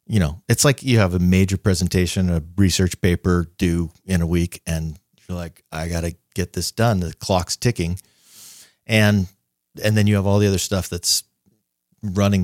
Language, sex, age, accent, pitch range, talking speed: English, male, 30-49, American, 85-105 Hz, 190 wpm